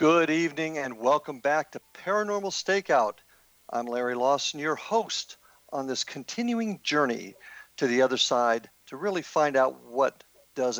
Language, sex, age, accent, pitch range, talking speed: English, male, 50-69, American, 130-190 Hz, 150 wpm